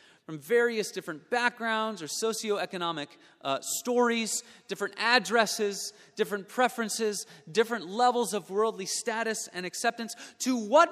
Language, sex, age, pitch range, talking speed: English, male, 30-49, 165-235 Hz, 115 wpm